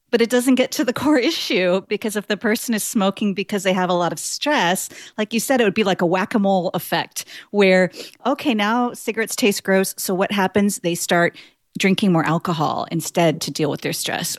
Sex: female